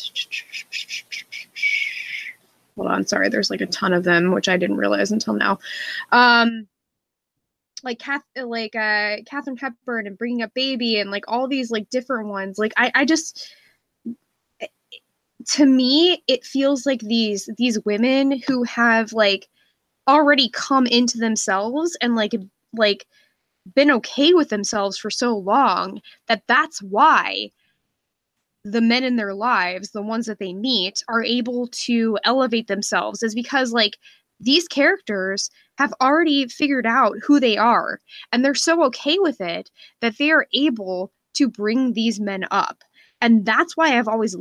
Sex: female